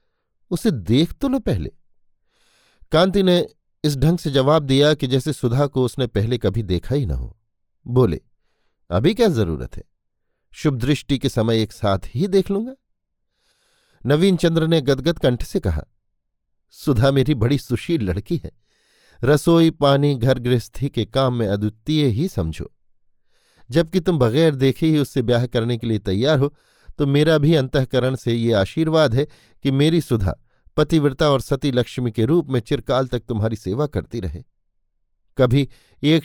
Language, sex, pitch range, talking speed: Hindi, male, 115-150 Hz, 160 wpm